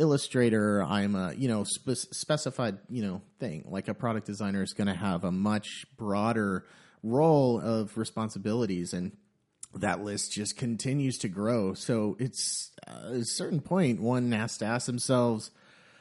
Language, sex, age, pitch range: English, male, 30-49, 105-130 Hz